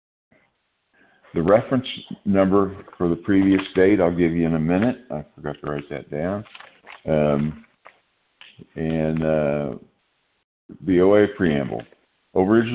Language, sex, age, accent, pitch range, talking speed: English, male, 50-69, American, 80-95 Hz, 120 wpm